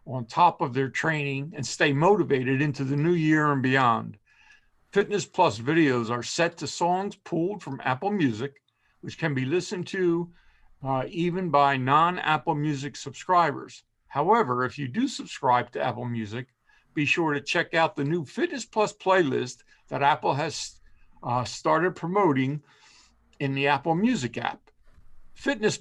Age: 50-69